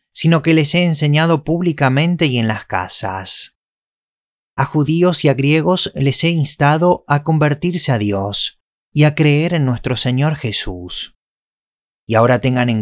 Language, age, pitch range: Spanish, 20-39, 120-160 Hz